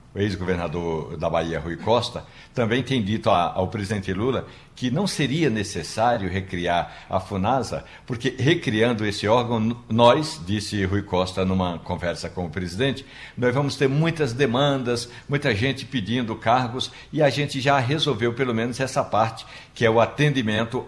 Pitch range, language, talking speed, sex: 100-140 Hz, Portuguese, 155 wpm, male